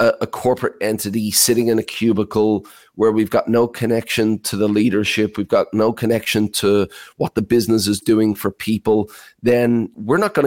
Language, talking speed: English, 180 wpm